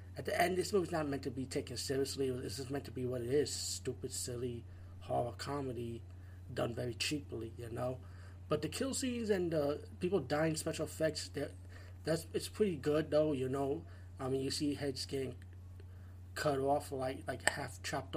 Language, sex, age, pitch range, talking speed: English, male, 30-49, 95-150 Hz, 180 wpm